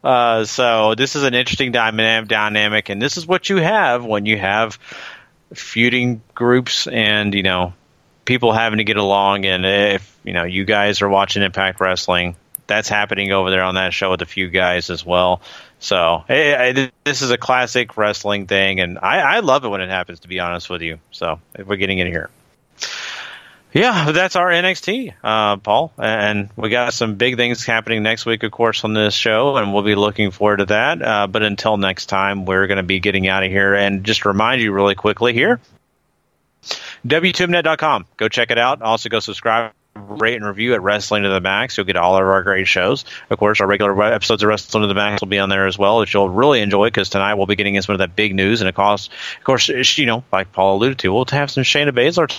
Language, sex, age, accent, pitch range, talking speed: English, male, 30-49, American, 95-120 Hz, 225 wpm